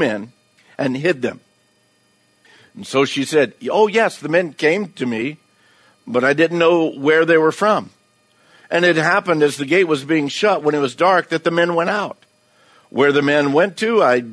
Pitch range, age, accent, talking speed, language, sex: 125-155 Hz, 50-69, American, 200 wpm, English, male